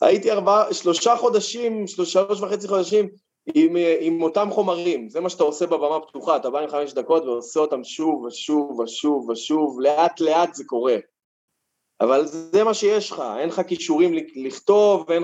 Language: Hebrew